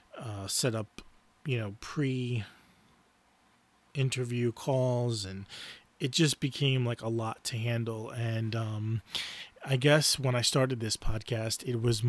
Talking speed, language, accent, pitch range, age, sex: 135 wpm, English, American, 115-130 Hz, 30-49, male